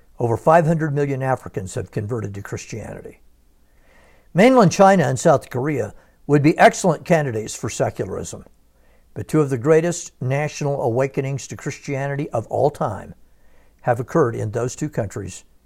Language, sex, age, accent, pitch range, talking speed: English, male, 60-79, American, 95-160 Hz, 140 wpm